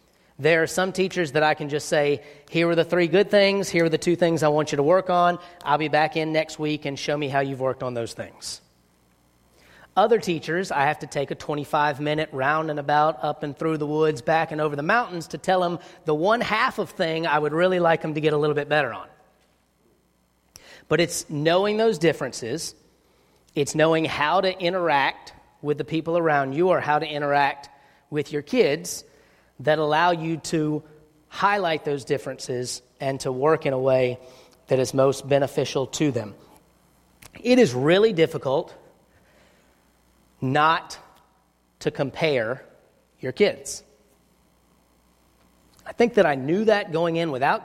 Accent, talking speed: American, 180 wpm